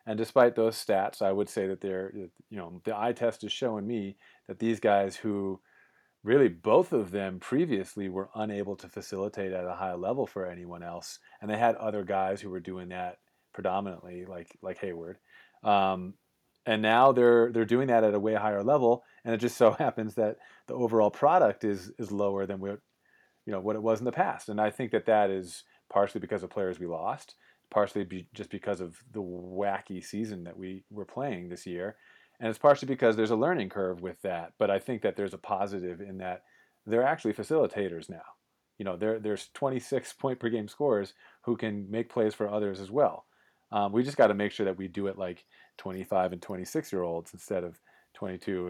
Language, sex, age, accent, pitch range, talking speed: English, male, 30-49, American, 95-115 Hz, 210 wpm